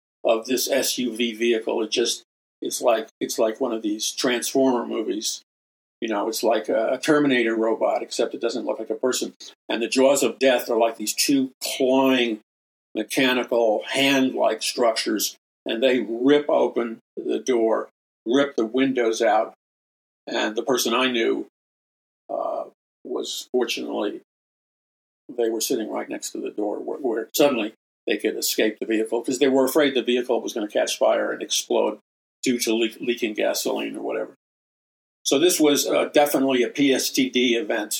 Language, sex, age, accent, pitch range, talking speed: English, male, 50-69, American, 115-140 Hz, 165 wpm